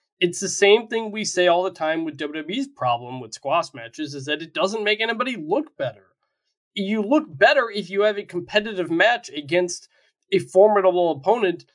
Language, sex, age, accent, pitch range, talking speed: English, male, 20-39, American, 150-205 Hz, 185 wpm